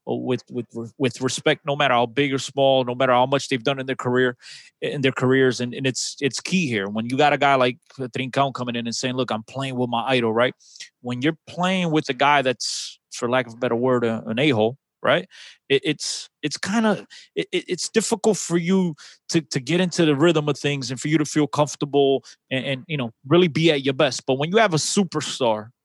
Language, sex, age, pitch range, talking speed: English, male, 30-49, 130-175 Hz, 235 wpm